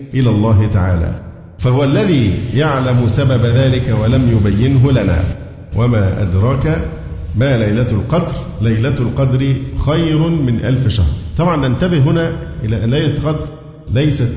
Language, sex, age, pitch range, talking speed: Arabic, male, 50-69, 110-140 Hz, 125 wpm